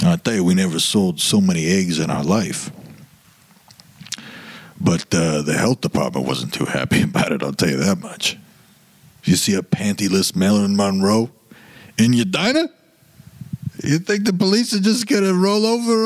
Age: 60-79